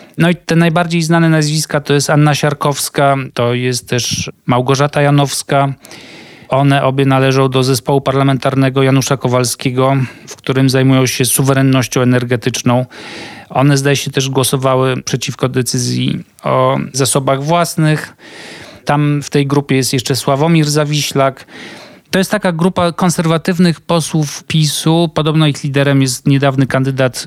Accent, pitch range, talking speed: native, 130-150 Hz, 130 wpm